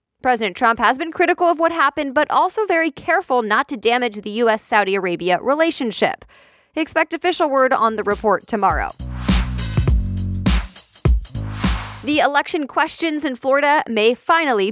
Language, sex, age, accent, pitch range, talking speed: English, female, 20-39, American, 205-295 Hz, 135 wpm